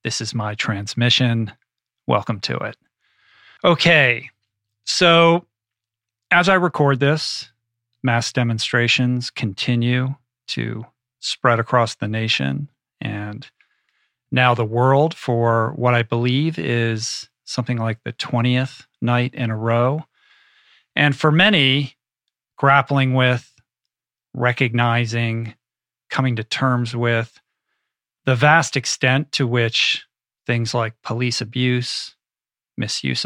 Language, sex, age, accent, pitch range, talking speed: English, male, 40-59, American, 115-140 Hz, 105 wpm